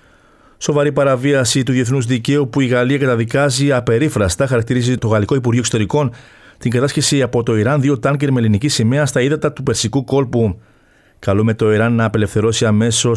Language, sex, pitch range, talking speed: Greek, male, 110-140 Hz, 165 wpm